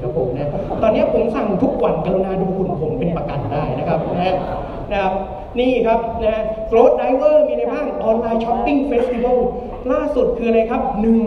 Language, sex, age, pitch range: Thai, male, 30-49, 160-230 Hz